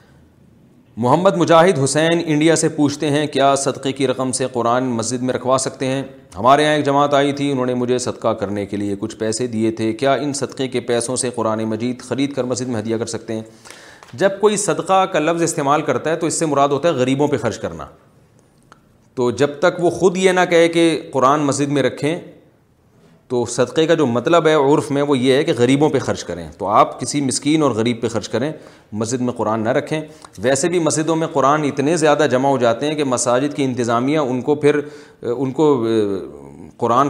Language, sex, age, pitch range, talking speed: Urdu, male, 40-59, 120-150 Hz, 215 wpm